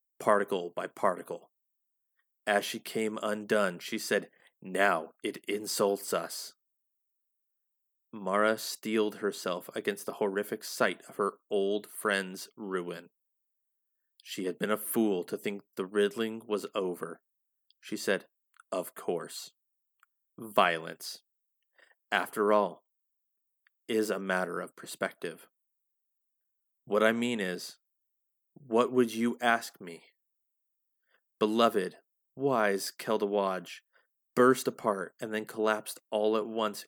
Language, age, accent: English, 30-49, American